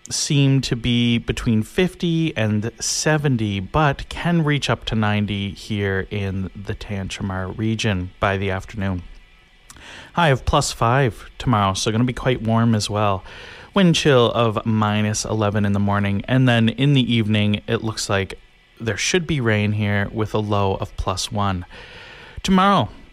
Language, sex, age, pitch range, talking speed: English, male, 30-49, 105-145 Hz, 160 wpm